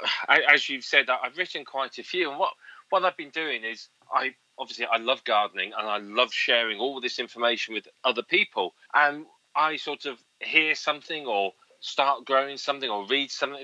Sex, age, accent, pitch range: male, 30-49, British, 115-140 Hz